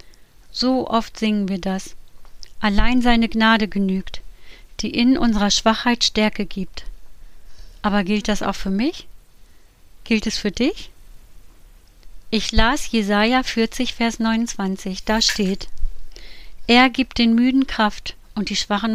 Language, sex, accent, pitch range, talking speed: German, female, German, 200-245 Hz, 130 wpm